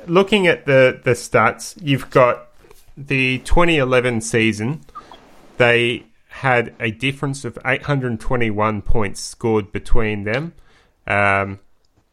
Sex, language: male, English